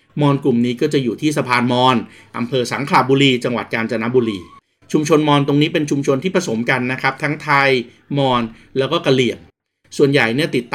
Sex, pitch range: male, 120-145 Hz